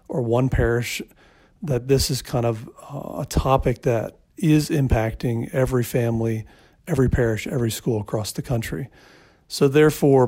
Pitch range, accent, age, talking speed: 120-140 Hz, American, 40-59, 145 wpm